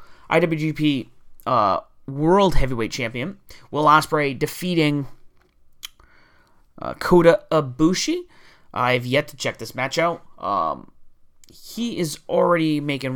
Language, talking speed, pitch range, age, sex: English, 105 wpm, 135-175 Hz, 30-49, male